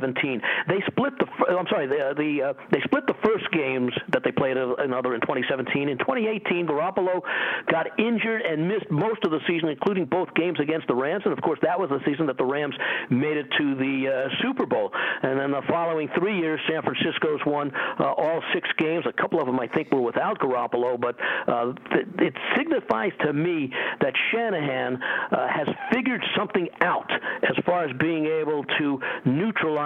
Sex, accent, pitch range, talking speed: male, American, 135-175 Hz, 195 wpm